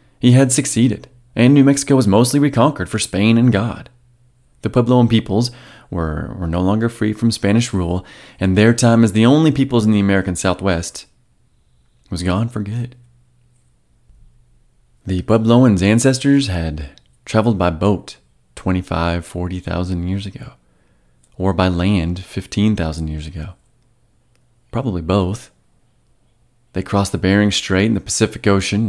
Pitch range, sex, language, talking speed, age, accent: 90-115 Hz, male, English, 145 wpm, 30-49, American